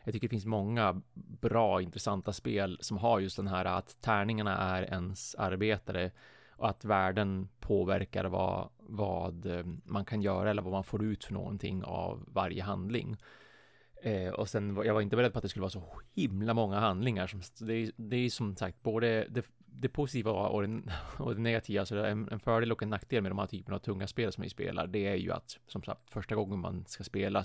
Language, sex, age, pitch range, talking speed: Swedish, male, 30-49, 95-115 Hz, 210 wpm